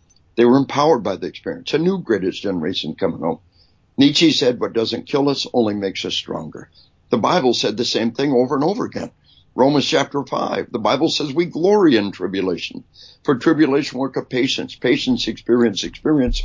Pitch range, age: 110-145 Hz, 60-79